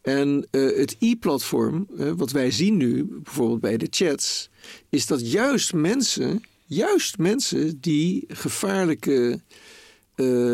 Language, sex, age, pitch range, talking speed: Dutch, male, 50-69, 135-170 Hz, 125 wpm